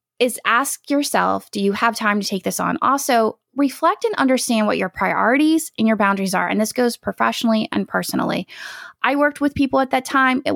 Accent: American